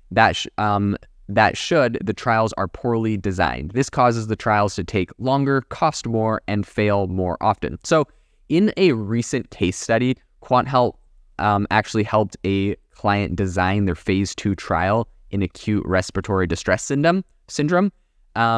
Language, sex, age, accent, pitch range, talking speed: English, male, 20-39, American, 100-120 Hz, 150 wpm